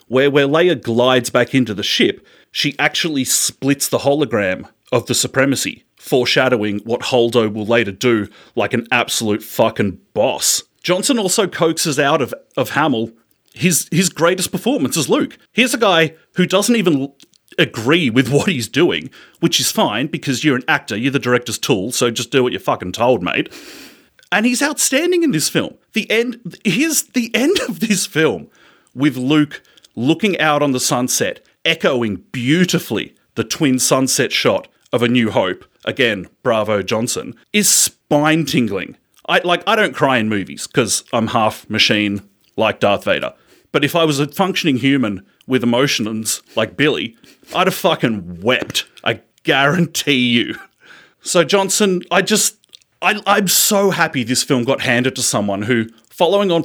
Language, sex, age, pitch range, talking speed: English, male, 30-49, 120-185 Hz, 165 wpm